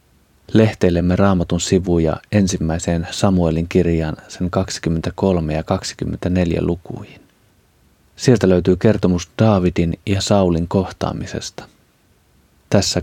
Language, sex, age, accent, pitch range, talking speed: Finnish, male, 30-49, native, 85-100 Hz, 85 wpm